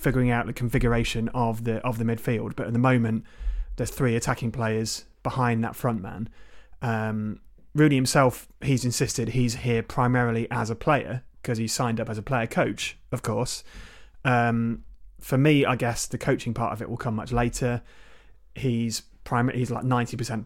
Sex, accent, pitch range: male, British, 115-125 Hz